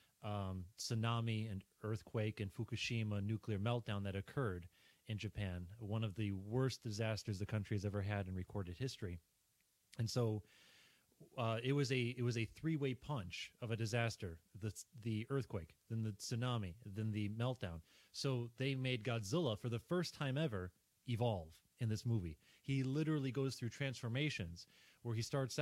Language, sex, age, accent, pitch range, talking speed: English, male, 30-49, American, 105-125 Hz, 160 wpm